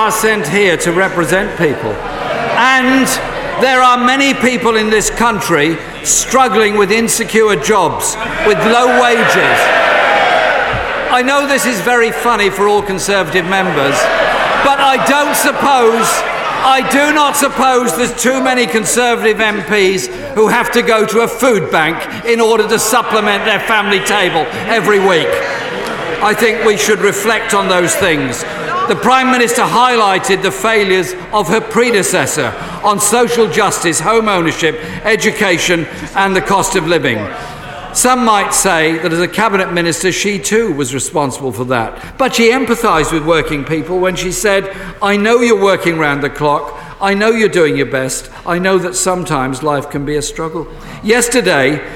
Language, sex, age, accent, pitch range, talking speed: English, male, 50-69, British, 180-235 Hz, 155 wpm